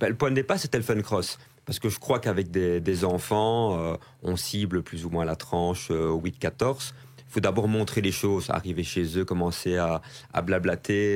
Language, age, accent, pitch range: French, 30-49, French, 90-110 Hz